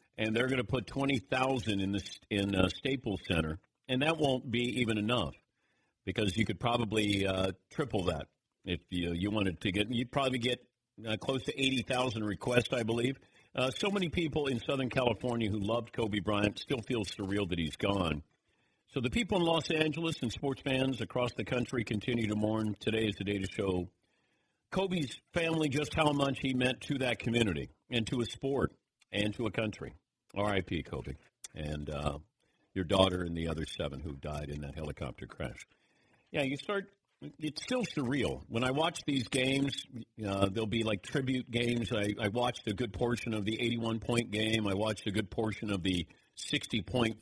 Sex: male